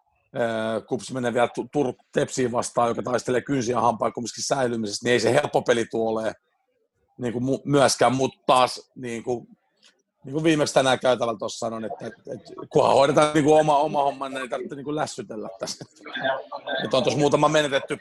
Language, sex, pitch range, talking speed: Finnish, male, 120-145 Hz, 165 wpm